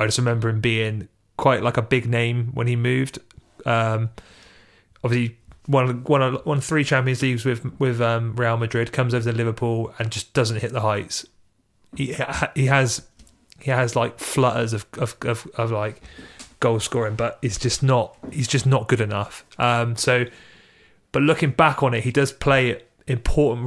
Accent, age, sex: British, 30-49, male